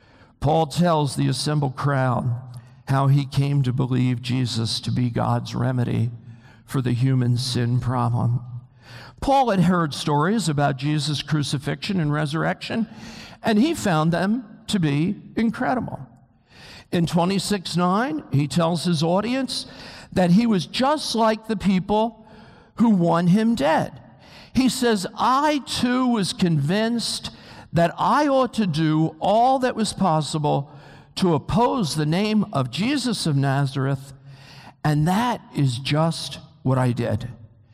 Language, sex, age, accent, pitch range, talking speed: English, male, 60-79, American, 135-215 Hz, 135 wpm